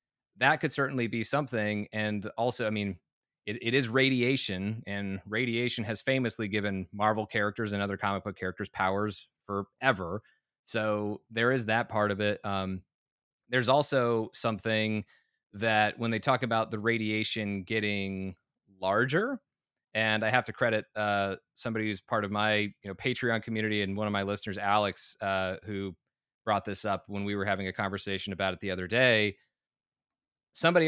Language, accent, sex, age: English, American, male, 30-49